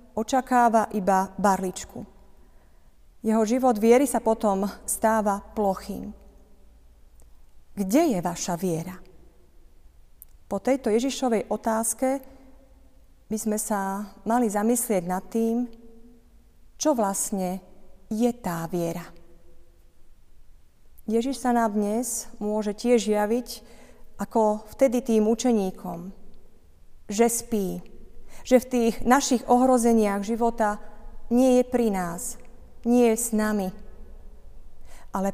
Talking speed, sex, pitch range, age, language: 100 wpm, female, 180-230 Hz, 30-49, Slovak